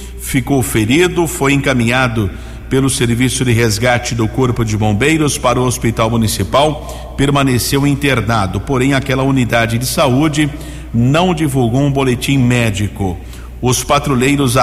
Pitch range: 115-140 Hz